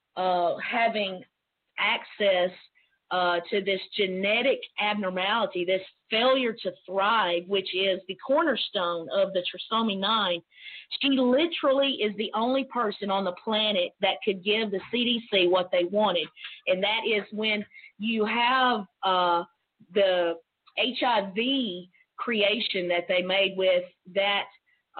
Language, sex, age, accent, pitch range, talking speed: English, female, 40-59, American, 185-235 Hz, 125 wpm